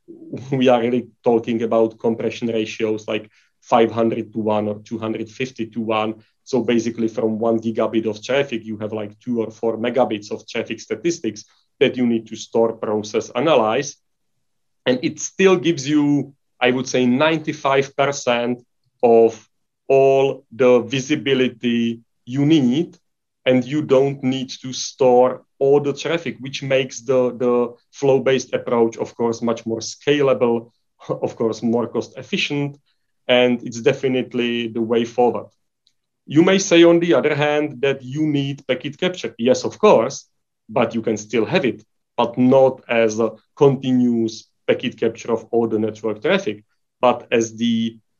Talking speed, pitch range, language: 150 wpm, 115-135 Hz, English